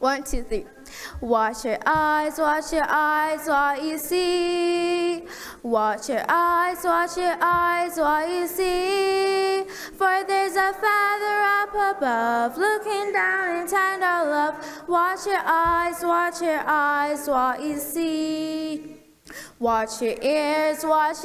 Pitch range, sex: 300-365 Hz, female